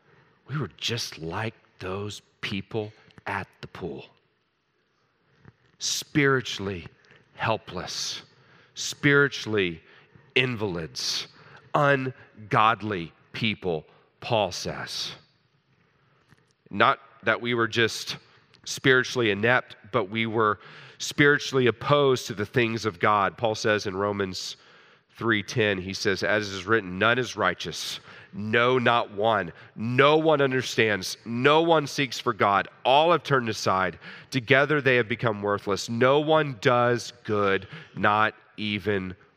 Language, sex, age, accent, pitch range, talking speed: English, male, 40-59, American, 105-135 Hz, 115 wpm